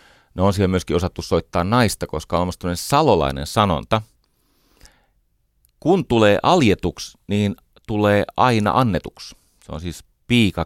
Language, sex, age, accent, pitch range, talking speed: Finnish, male, 40-59, native, 80-110 Hz, 135 wpm